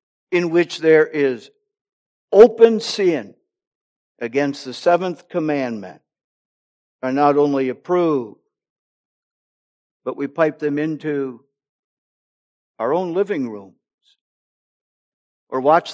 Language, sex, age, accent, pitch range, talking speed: English, male, 60-79, American, 125-175 Hz, 95 wpm